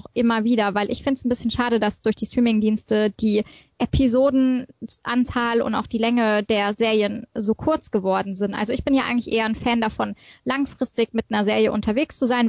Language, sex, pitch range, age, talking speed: German, female, 210-240 Hz, 20-39, 195 wpm